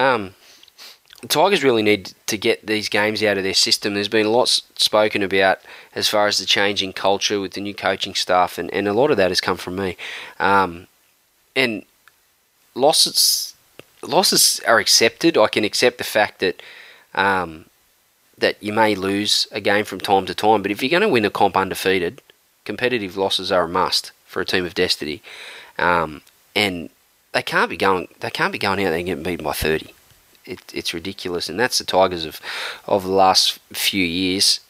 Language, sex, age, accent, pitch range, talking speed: English, male, 20-39, Australian, 95-110 Hz, 190 wpm